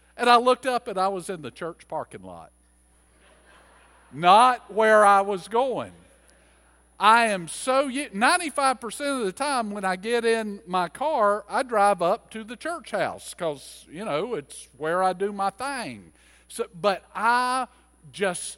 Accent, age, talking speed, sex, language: American, 50-69, 160 wpm, male, English